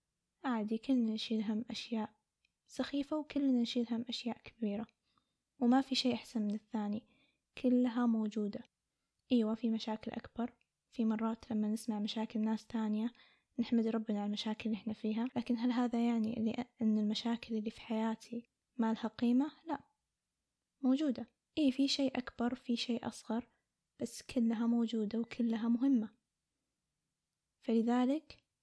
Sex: female